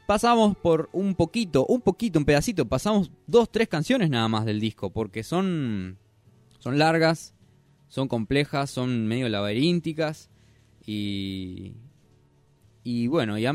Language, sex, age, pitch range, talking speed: Spanish, male, 20-39, 105-140 Hz, 135 wpm